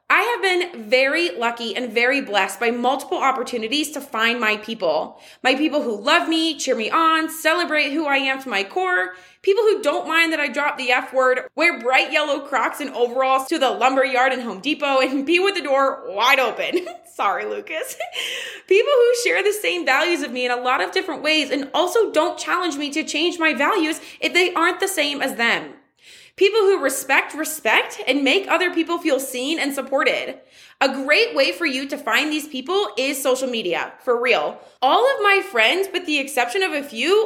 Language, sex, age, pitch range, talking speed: English, female, 20-39, 260-355 Hz, 205 wpm